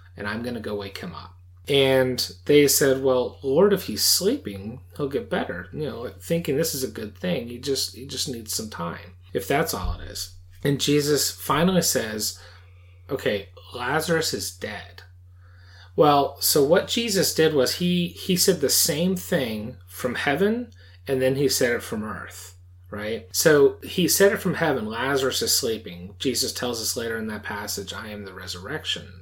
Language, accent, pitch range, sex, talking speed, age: English, American, 95-145 Hz, male, 185 wpm, 30-49